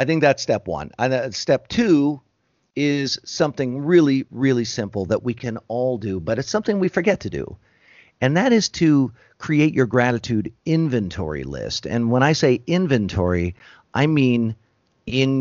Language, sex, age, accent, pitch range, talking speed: English, male, 50-69, American, 100-135 Hz, 165 wpm